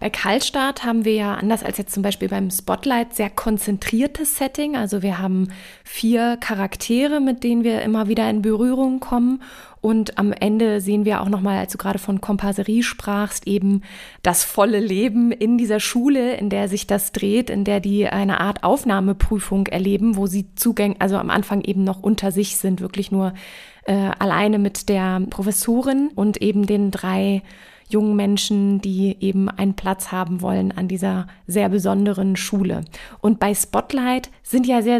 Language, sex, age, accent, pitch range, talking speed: German, female, 20-39, German, 200-235 Hz, 175 wpm